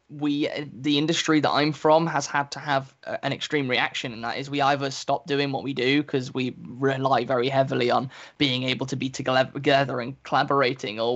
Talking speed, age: 200 wpm, 10-29